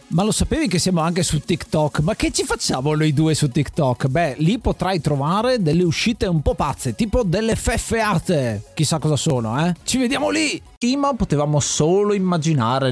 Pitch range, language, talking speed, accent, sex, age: 135-190 Hz, Italian, 180 wpm, native, male, 30-49